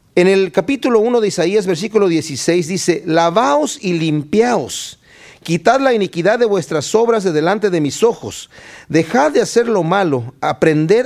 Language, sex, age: Spanish, male, 40-59